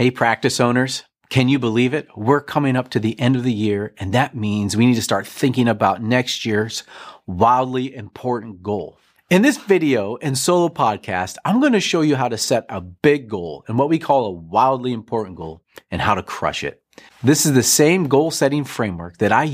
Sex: male